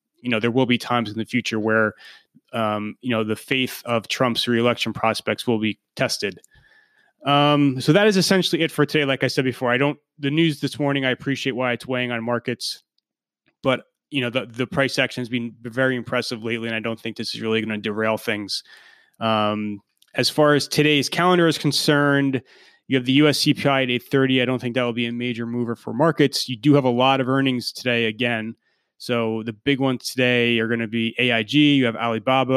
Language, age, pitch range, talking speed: English, 30-49, 115-140 Hz, 215 wpm